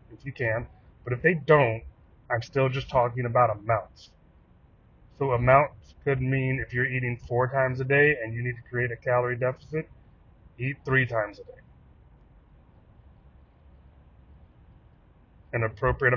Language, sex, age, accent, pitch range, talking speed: English, male, 30-49, American, 110-135 Hz, 145 wpm